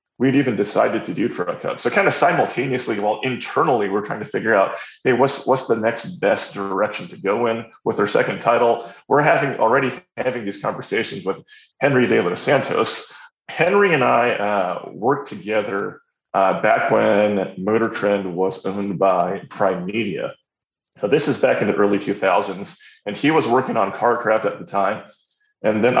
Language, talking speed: English, 180 wpm